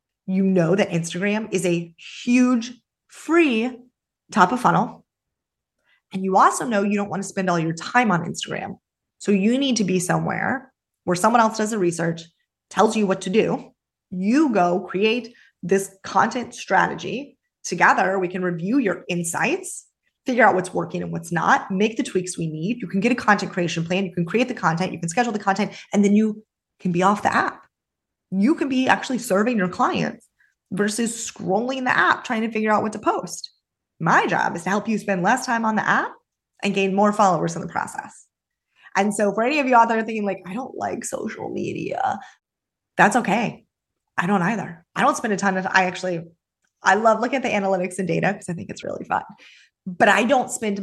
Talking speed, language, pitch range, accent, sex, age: 205 wpm, English, 185-230 Hz, American, female, 20-39